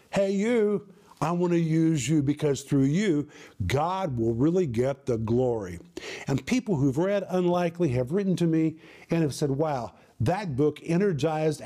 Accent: American